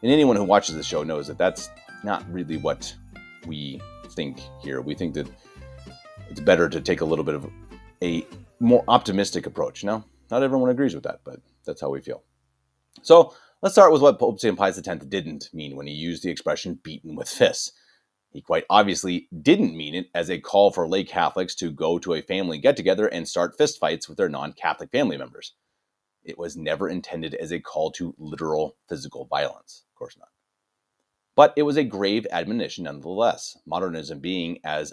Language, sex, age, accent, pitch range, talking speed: English, male, 30-49, American, 80-110 Hz, 185 wpm